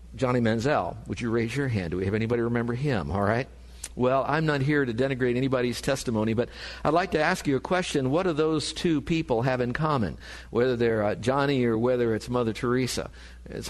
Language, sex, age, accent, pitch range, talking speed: English, male, 50-69, American, 110-145 Hz, 215 wpm